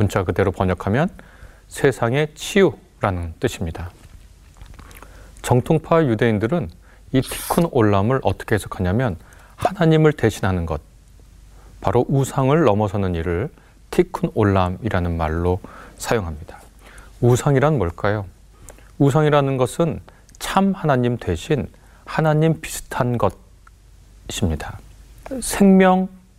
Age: 30-49